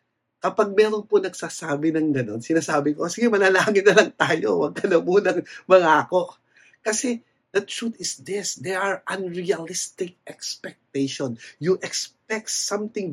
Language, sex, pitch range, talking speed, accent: English, male, 145-205 Hz, 135 wpm, Filipino